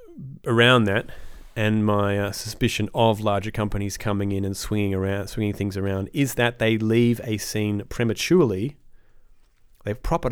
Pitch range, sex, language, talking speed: 100-115 Hz, male, English, 150 wpm